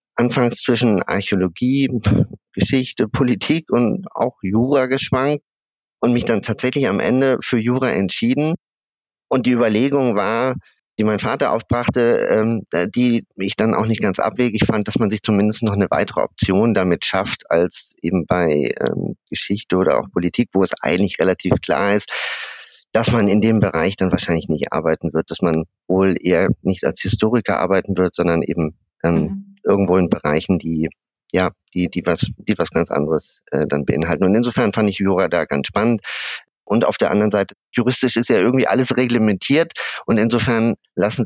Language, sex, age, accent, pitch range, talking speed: German, male, 50-69, German, 95-120 Hz, 170 wpm